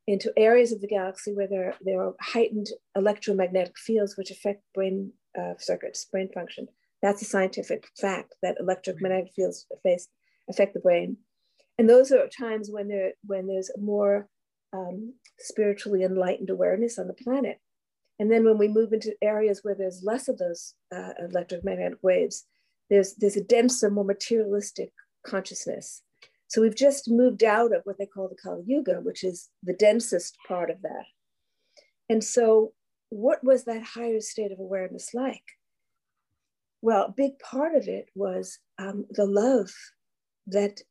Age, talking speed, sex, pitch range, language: 50-69, 155 wpm, female, 190-225 Hz, English